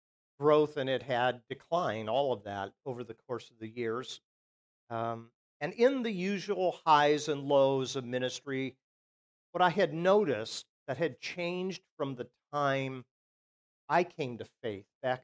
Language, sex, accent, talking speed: English, male, American, 155 wpm